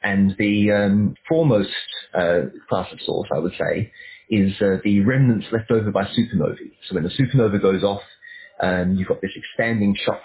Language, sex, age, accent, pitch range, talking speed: English, male, 30-49, British, 95-120 Hz, 180 wpm